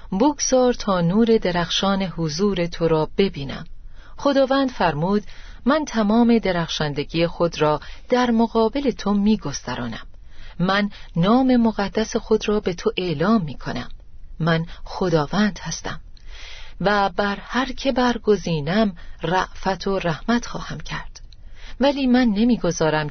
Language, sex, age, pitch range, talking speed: Persian, female, 40-59, 160-235 Hz, 120 wpm